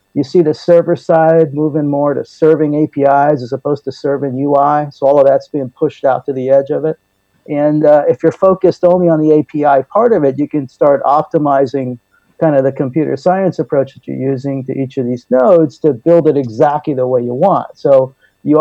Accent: American